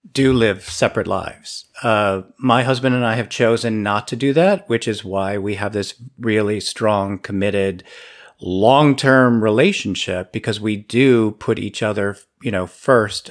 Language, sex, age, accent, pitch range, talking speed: English, male, 50-69, American, 105-135 Hz, 160 wpm